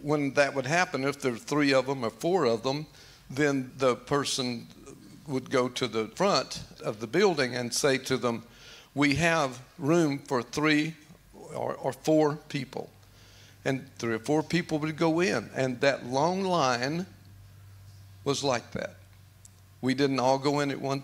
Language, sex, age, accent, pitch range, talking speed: English, male, 50-69, American, 120-145 Hz, 170 wpm